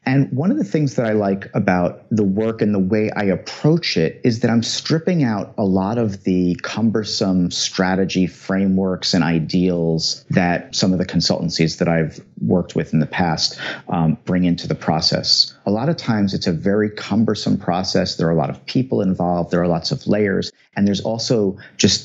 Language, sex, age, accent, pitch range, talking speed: English, male, 40-59, American, 90-110 Hz, 200 wpm